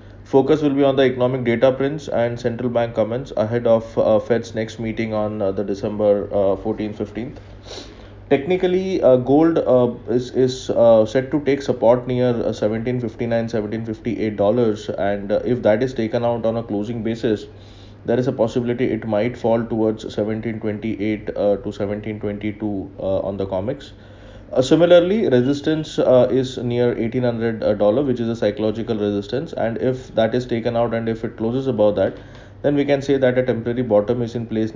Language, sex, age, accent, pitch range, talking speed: English, male, 20-39, Indian, 105-125 Hz, 180 wpm